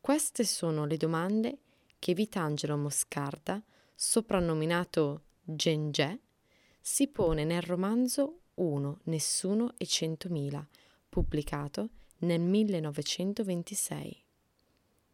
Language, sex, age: Italian, female, 20-39